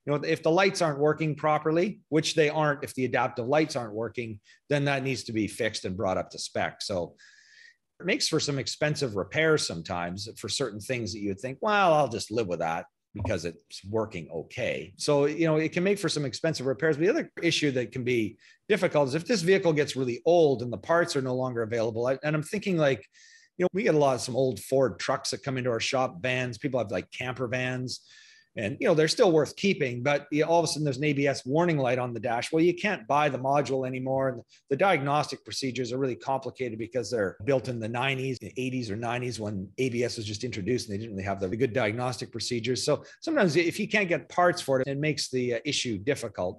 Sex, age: male, 40-59